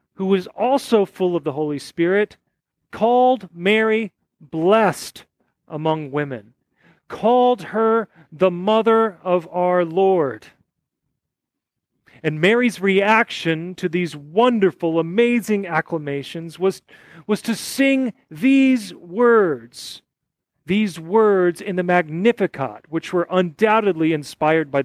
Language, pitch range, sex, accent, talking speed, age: English, 155-215 Hz, male, American, 105 wpm, 40-59